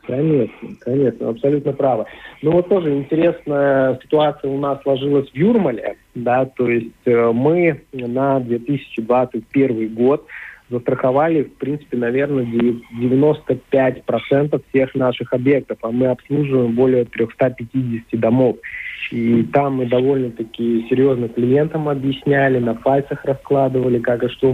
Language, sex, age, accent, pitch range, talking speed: Russian, male, 50-69, native, 120-140 Hz, 115 wpm